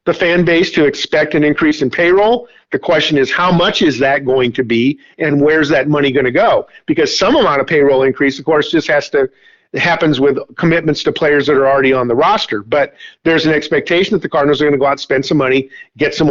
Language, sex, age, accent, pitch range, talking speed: English, male, 50-69, American, 145-175 Hz, 245 wpm